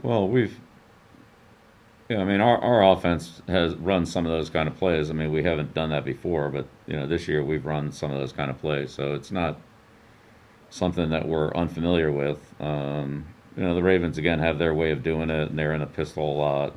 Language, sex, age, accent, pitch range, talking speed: English, male, 50-69, American, 70-85 Hz, 230 wpm